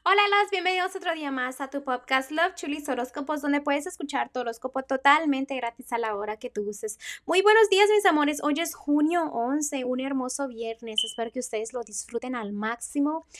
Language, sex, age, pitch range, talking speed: Spanish, female, 20-39, 200-245 Hz, 195 wpm